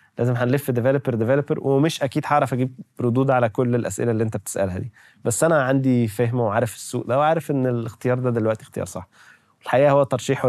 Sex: male